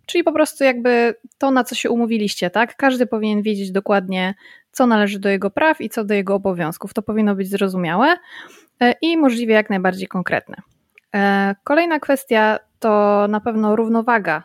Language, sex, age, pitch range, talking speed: Polish, female, 20-39, 195-240 Hz, 160 wpm